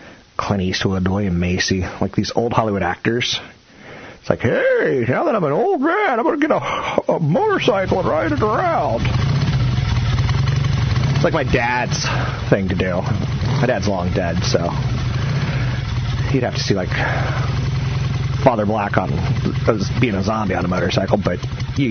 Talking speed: 155 wpm